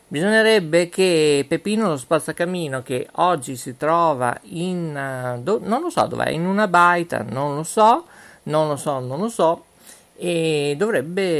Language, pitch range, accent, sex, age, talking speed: Italian, 135-180 Hz, native, male, 50-69, 155 wpm